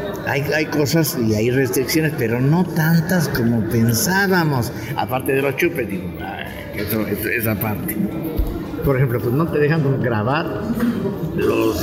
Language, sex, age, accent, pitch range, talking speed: English, male, 50-69, Mexican, 115-155 Hz, 130 wpm